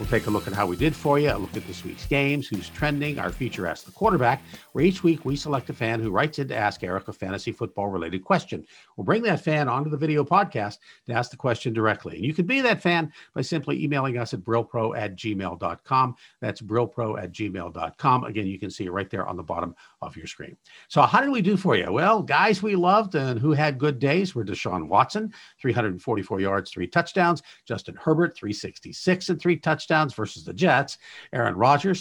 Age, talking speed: 50-69, 220 wpm